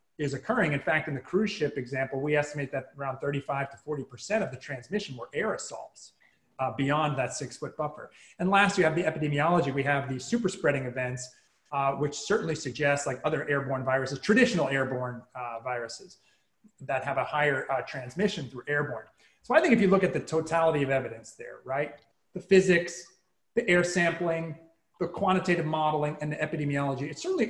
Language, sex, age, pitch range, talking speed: English, male, 30-49, 140-185 Hz, 185 wpm